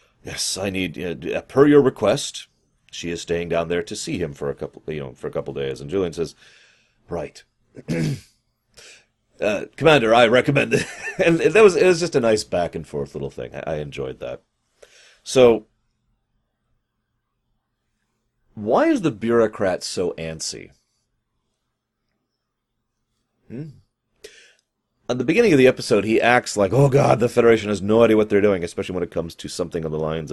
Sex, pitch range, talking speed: male, 85-120 Hz, 175 wpm